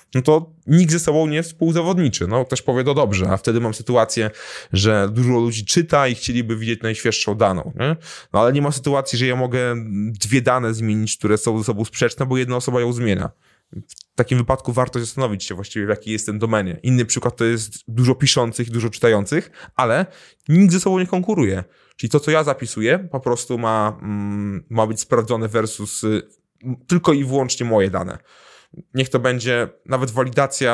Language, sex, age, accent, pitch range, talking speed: Polish, male, 20-39, native, 110-135 Hz, 190 wpm